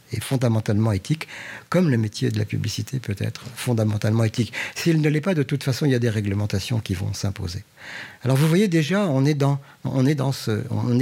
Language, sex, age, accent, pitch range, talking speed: French, male, 50-69, French, 115-145 Hz, 220 wpm